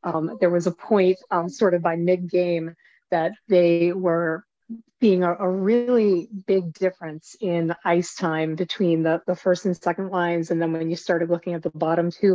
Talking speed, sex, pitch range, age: 195 wpm, female, 170-195 Hz, 30-49